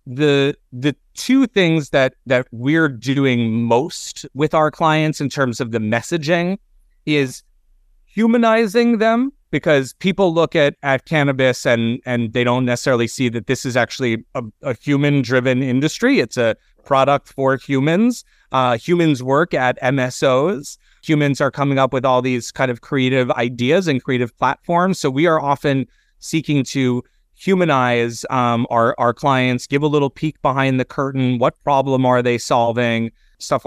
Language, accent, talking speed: English, American, 160 wpm